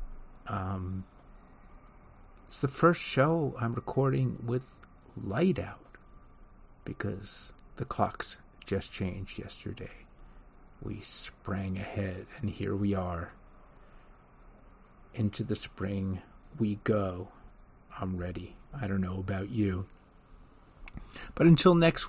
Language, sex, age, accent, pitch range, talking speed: English, male, 50-69, American, 95-120 Hz, 105 wpm